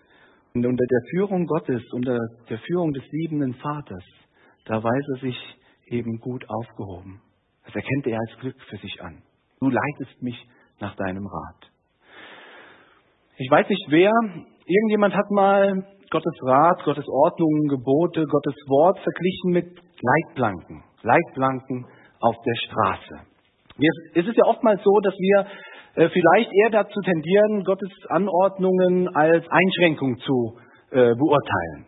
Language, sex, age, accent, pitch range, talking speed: German, male, 40-59, German, 125-185 Hz, 130 wpm